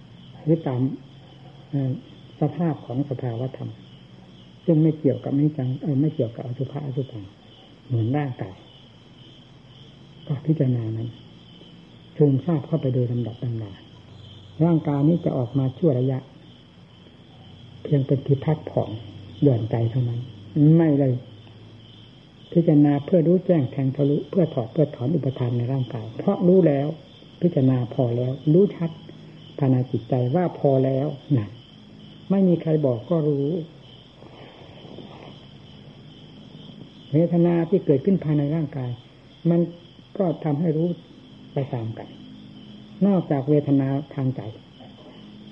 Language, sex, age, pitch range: Thai, female, 60-79, 125-155 Hz